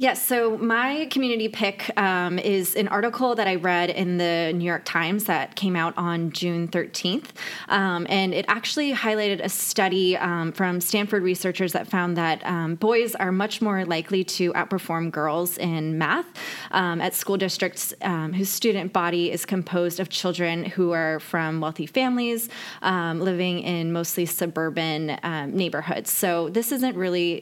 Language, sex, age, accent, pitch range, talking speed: English, female, 20-39, American, 170-200 Hz, 165 wpm